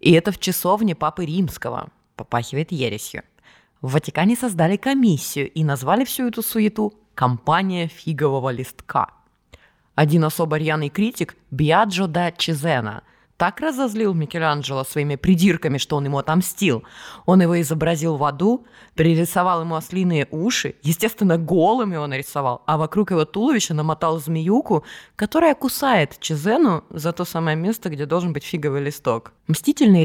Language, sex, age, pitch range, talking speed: Russian, female, 20-39, 150-195 Hz, 135 wpm